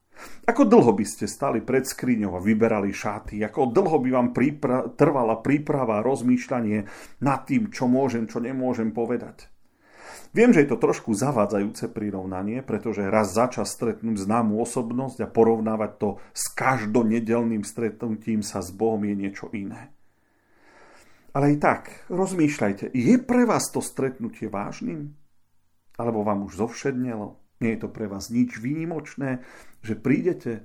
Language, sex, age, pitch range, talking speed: Slovak, male, 40-59, 105-135 Hz, 145 wpm